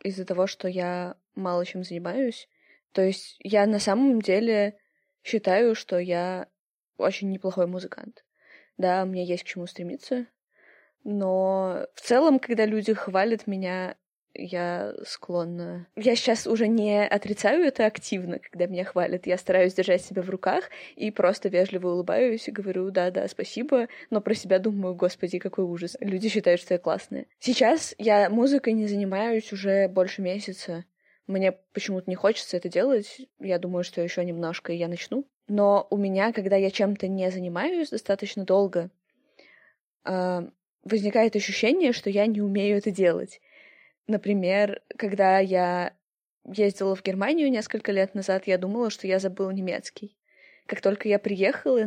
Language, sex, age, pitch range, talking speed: Russian, female, 20-39, 185-215 Hz, 245 wpm